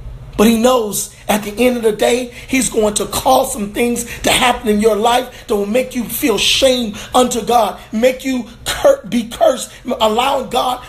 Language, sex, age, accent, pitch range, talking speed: English, male, 40-59, American, 245-315 Hz, 195 wpm